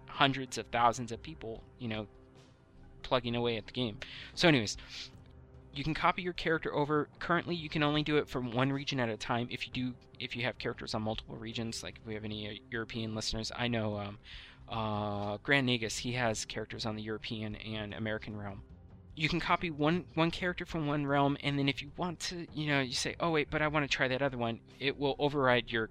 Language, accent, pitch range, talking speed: English, American, 110-140 Hz, 225 wpm